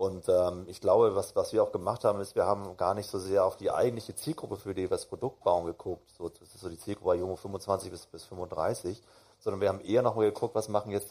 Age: 40-59